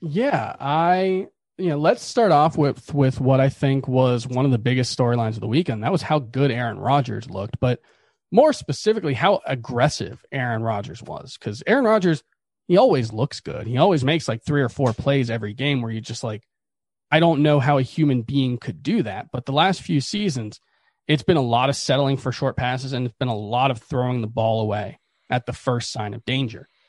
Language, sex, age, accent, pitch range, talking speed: English, male, 30-49, American, 120-155 Hz, 215 wpm